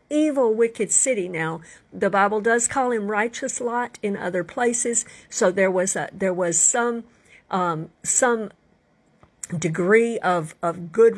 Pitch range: 175-230 Hz